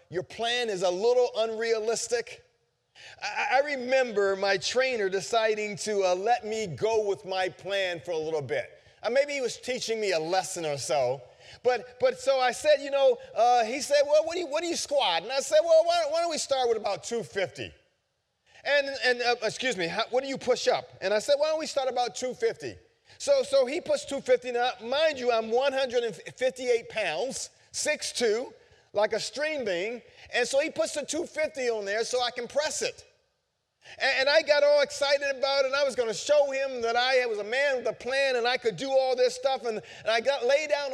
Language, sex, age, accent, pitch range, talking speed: English, male, 30-49, American, 230-300 Hz, 220 wpm